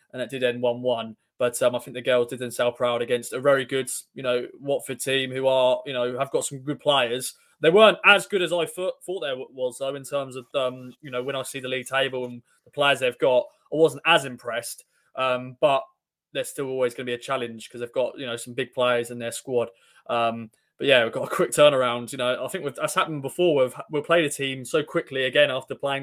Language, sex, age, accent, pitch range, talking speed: English, male, 20-39, British, 125-170 Hz, 260 wpm